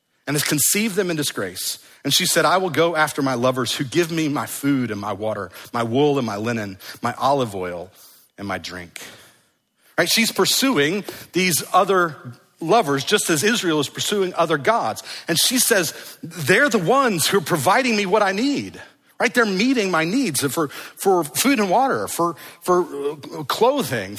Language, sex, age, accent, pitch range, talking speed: English, male, 50-69, American, 130-195 Hz, 180 wpm